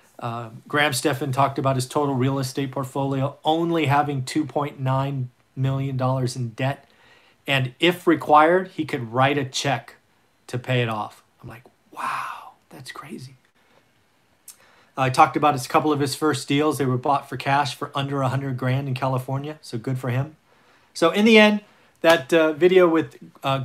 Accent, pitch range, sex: American, 130-155 Hz, male